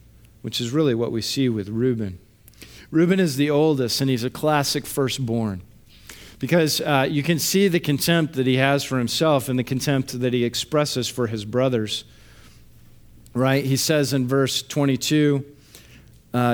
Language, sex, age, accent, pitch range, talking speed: English, male, 50-69, American, 115-140 Hz, 165 wpm